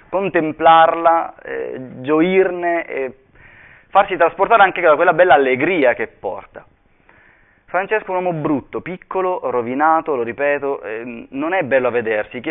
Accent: native